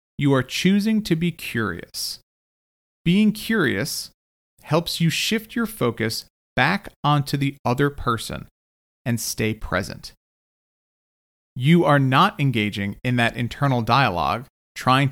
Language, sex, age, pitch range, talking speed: English, male, 40-59, 105-155 Hz, 120 wpm